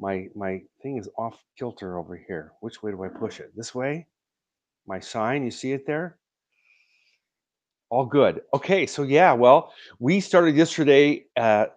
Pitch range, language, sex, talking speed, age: 100-135 Hz, English, male, 165 wpm, 50-69